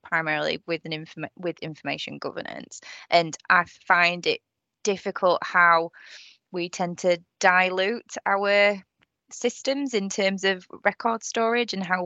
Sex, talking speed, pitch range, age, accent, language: female, 130 wpm, 180-220 Hz, 20-39, British, English